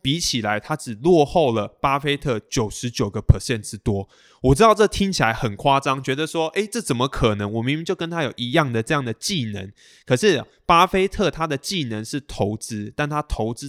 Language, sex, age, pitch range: Chinese, male, 20-39, 115-160 Hz